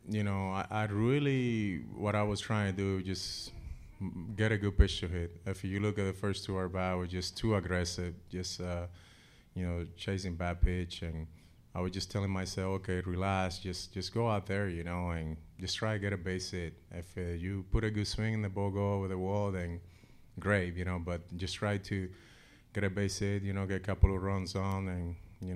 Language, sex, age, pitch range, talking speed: English, male, 30-49, 90-100 Hz, 230 wpm